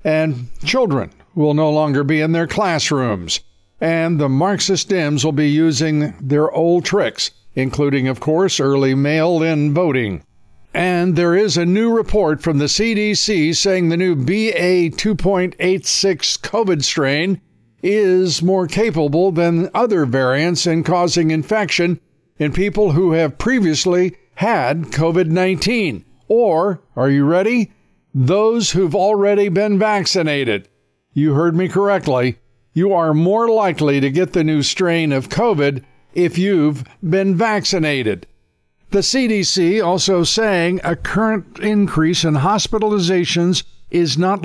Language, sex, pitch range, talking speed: English, male, 150-190 Hz, 130 wpm